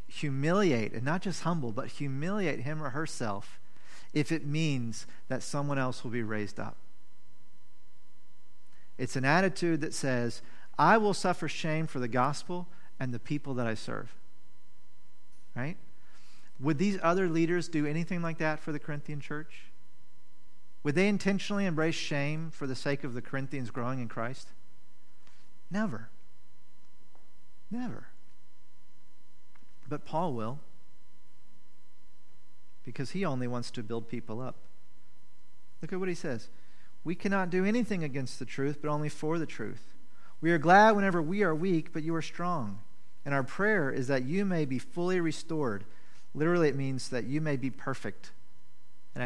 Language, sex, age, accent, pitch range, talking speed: English, male, 40-59, American, 125-165 Hz, 150 wpm